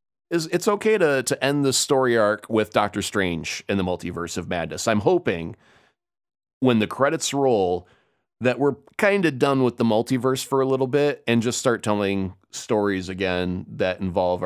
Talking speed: 175 wpm